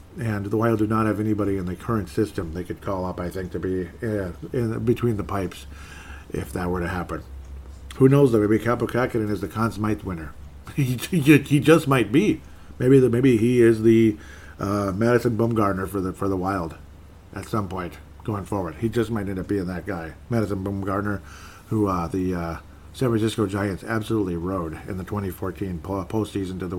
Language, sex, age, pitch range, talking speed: English, male, 50-69, 85-110 Hz, 200 wpm